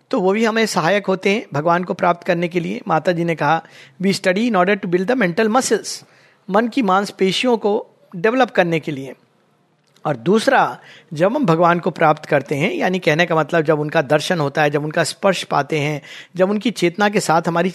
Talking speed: 215 wpm